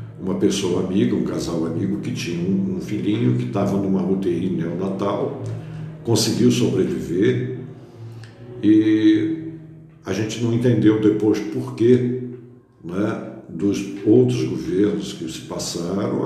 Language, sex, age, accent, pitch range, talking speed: Portuguese, male, 60-79, Brazilian, 95-125 Hz, 115 wpm